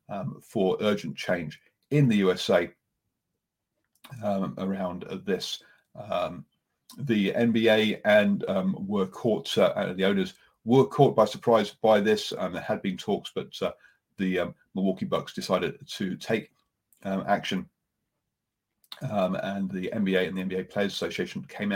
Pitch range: 95-150 Hz